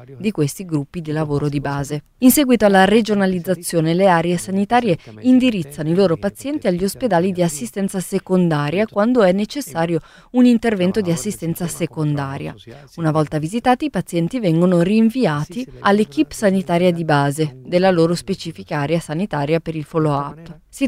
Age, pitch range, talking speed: 20-39, 160-210 Hz, 145 wpm